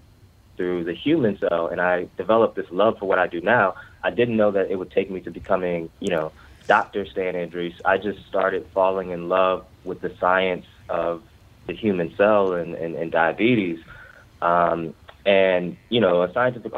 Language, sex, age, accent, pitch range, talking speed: English, male, 20-39, American, 90-110 Hz, 185 wpm